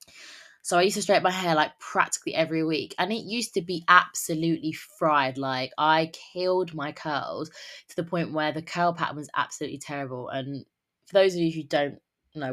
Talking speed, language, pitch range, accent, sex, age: 195 wpm, English, 145-180 Hz, British, female, 20-39